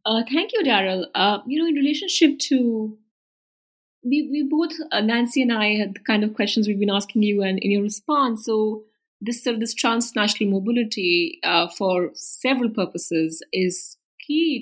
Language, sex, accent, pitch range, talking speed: English, female, Indian, 185-260 Hz, 175 wpm